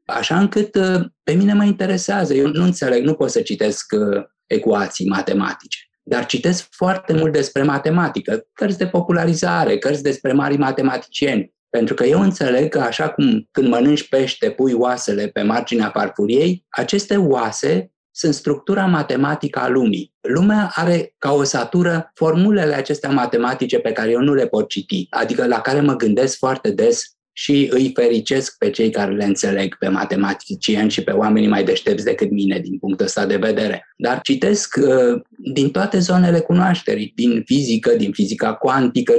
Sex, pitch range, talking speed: male, 120-190 Hz, 160 wpm